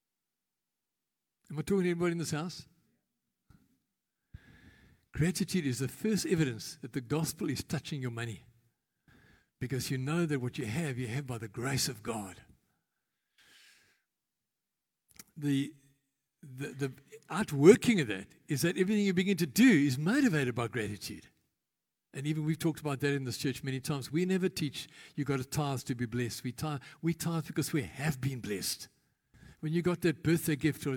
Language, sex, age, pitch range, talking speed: English, male, 60-79, 135-170 Hz, 170 wpm